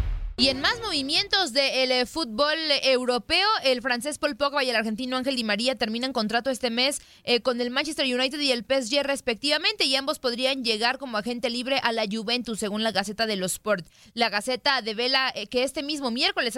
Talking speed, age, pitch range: 205 wpm, 20-39, 225-280 Hz